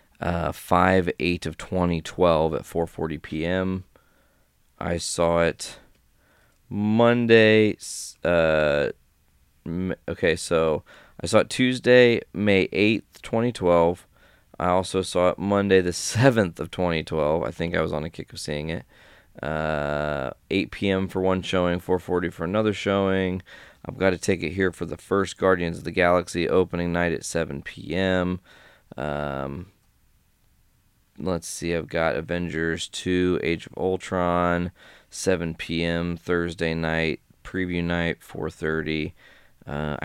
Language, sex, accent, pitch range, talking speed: English, male, American, 80-95 Hz, 130 wpm